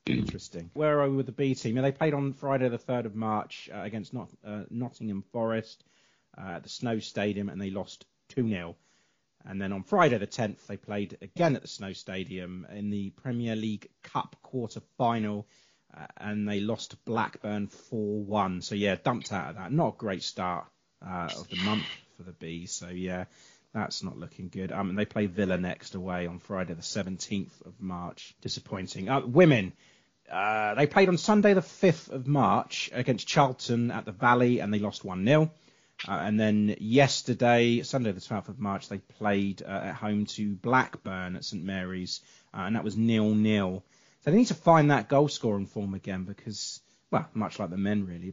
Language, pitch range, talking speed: English, 100-125 Hz, 190 wpm